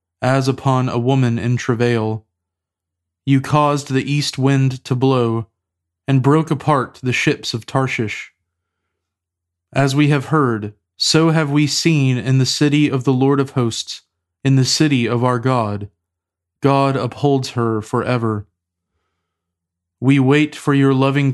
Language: English